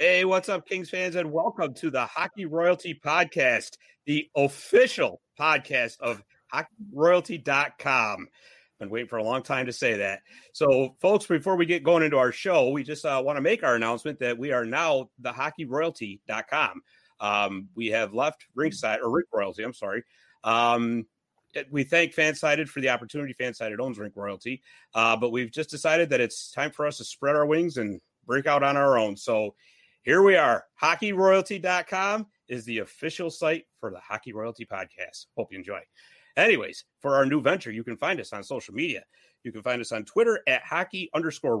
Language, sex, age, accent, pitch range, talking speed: English, male, 40-59, American, 115-165 Hz, 180 wpm